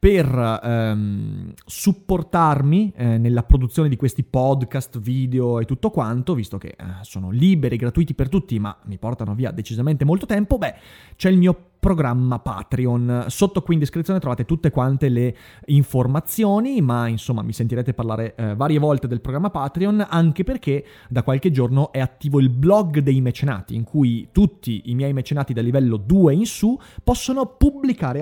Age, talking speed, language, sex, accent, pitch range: 30-49, 165 wpm, Italian, male, native, 120-175 Hz